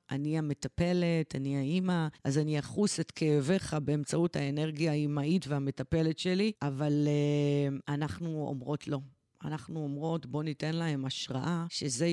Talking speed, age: 130 wpm, 30-49